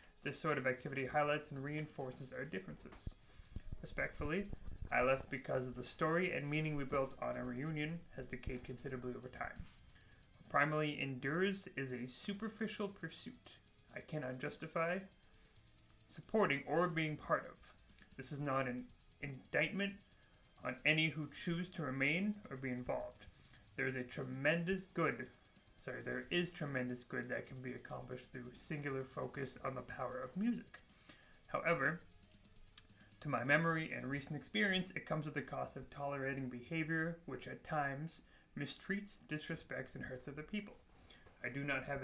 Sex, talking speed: male, 150 wpm